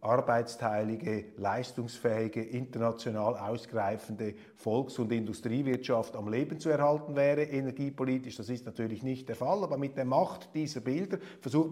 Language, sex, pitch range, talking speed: German, male, 115-145 Hz, 135 wpm